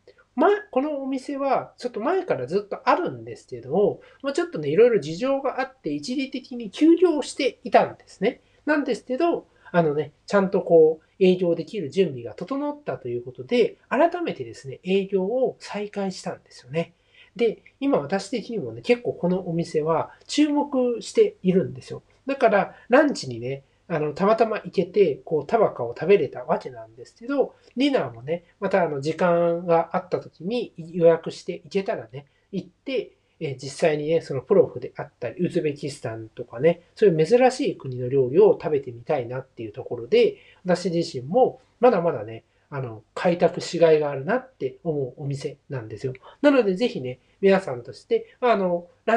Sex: male